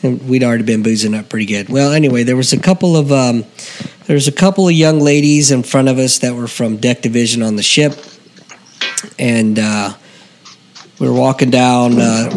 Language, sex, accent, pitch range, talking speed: English, male, American, 110-140 Hz, 200 wpm